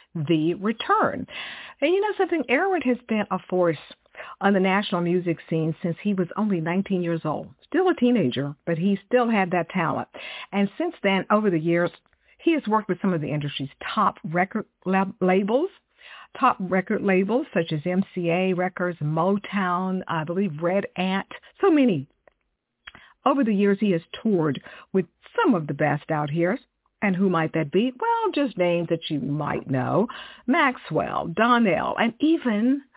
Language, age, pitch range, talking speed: English, 50-69, 175-245 Hz, 165 wpm